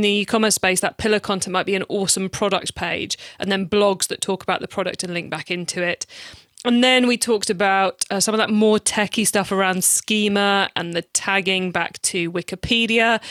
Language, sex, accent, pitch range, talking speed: English, female, British, 185-230 Hz, 205 wpm